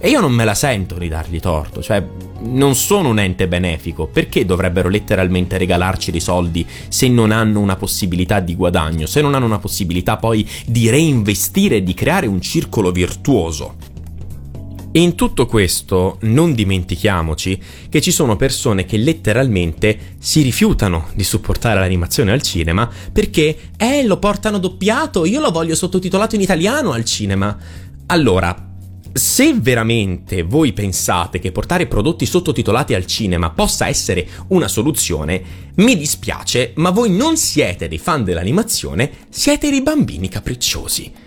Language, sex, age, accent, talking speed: Italian, male, 30-49, native, 150 wpm